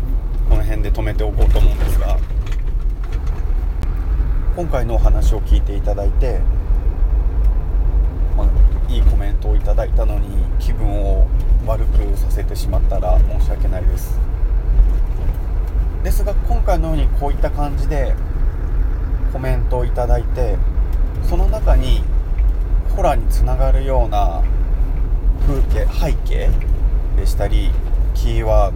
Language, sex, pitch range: Japanese, male, 70-105 Hz